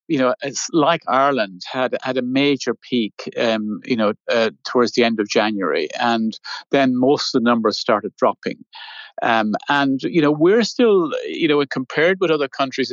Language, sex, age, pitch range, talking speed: English, male, 50-69, 120-155 Hz, 180 wpm